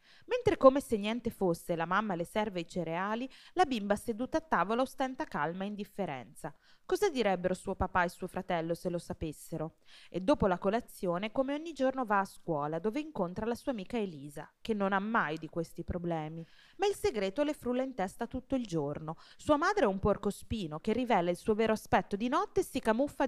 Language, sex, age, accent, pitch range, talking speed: Italian, female, 20-39, native, 180-260 Hz, 205 wpm